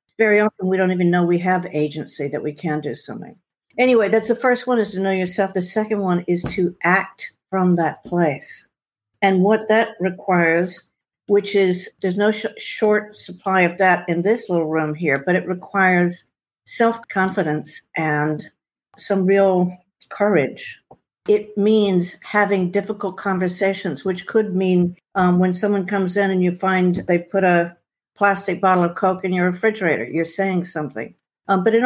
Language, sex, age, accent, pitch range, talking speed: English, female, 50-69, American, 175-205 Hz, 170 wpm